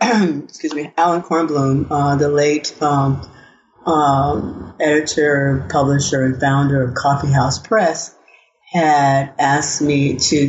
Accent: American